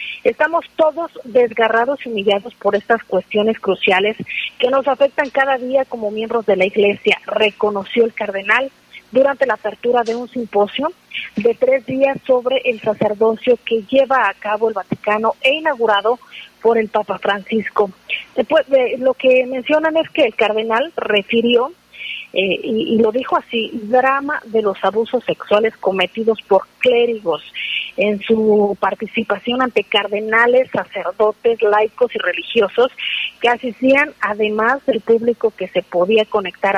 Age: 40-59